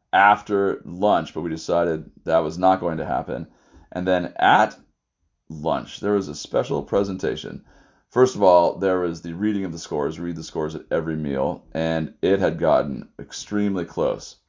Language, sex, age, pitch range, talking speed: English, male, 30-49, 80-100 Hz, 175 wpm